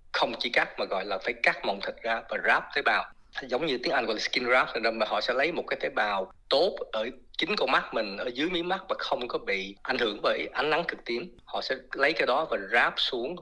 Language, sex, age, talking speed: Vietnamese, male, 20-39, 270 wpm